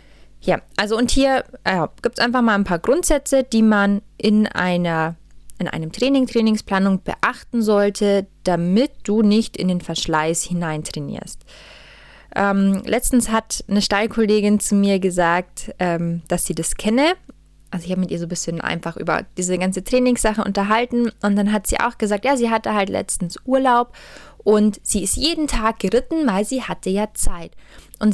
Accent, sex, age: German, female, 20-39